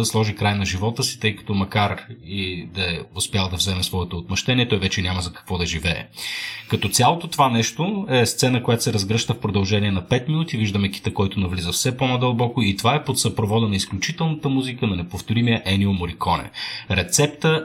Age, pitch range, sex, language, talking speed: 30-49, 100-125 Hz, male, Bulgarian, 195 wpm